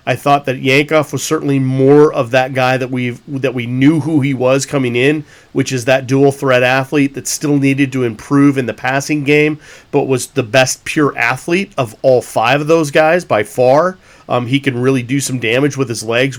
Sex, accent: male, American